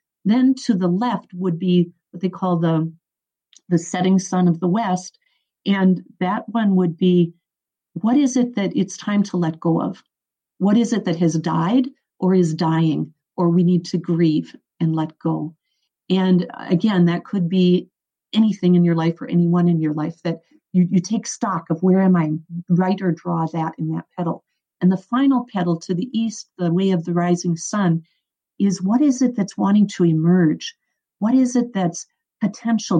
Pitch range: 175-210 Hz